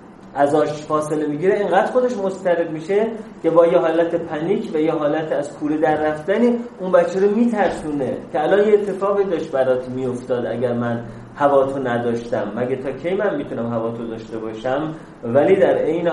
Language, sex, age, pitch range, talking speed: Persian, male, 30-49, 125-175 Hz, 180 wpm